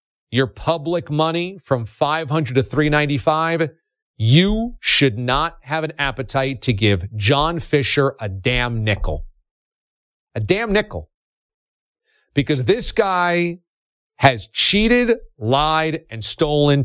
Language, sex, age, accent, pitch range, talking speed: English, male, 40-59, American, 140-225 Hz, 110 wpm